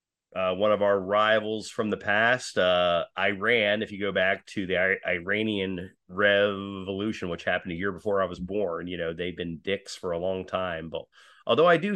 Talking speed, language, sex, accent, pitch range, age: 195 wpm, English, male, American, 85-105 Hz, 30-49